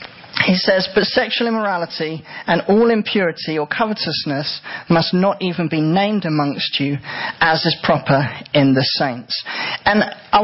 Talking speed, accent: 145 wpm, British